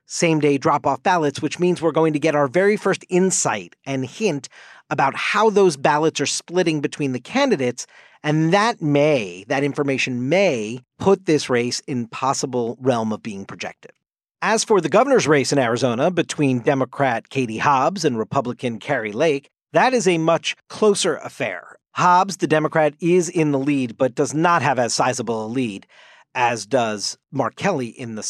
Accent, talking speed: American, 170 wpm